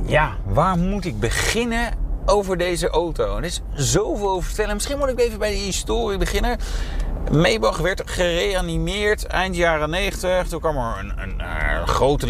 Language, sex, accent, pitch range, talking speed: Dutch, male, Dutch, 115-180 Hz, 170 wpm